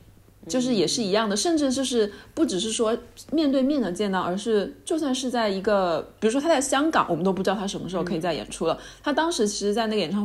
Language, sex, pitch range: Chinese, female, 165-215 Hz